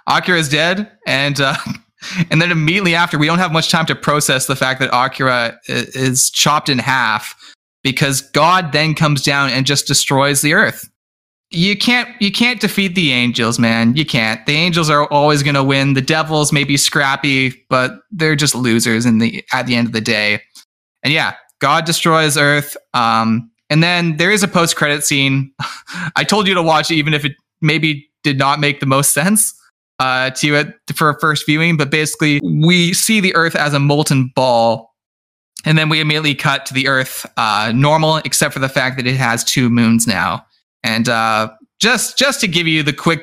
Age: 20-39